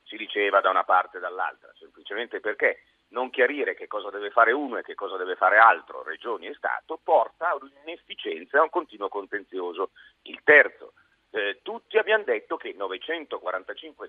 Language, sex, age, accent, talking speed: Italian, male, 40-59, native, 175 wpm